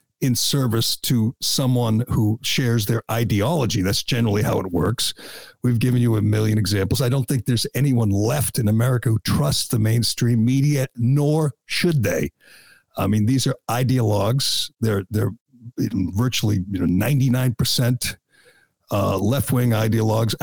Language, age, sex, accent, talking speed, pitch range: English, 60-79, male, American, 145 wpm, 110-130 Hz